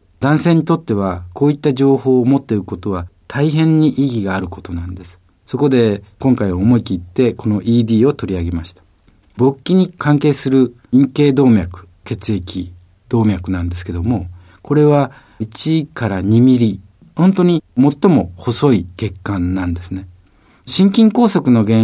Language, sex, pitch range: Japanese, male, 90-140 Hz